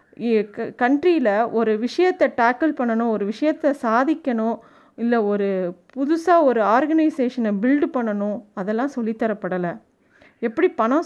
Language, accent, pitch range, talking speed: Tamil, native, 225-290 Hz, 105 wpm